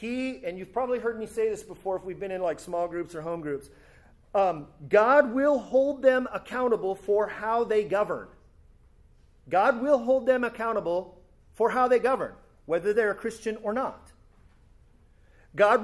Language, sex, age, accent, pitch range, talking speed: English, male, 40-59, American, 175-255 Hz, 170 wpm